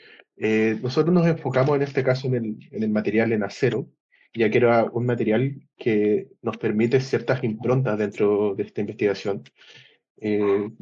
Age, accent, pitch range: 20-39, Argentinian, 105-120 Hz